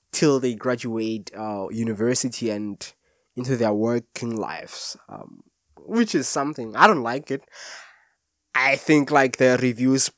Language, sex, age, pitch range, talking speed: English, male, 20-39, 115-150 Hz, 135 wpm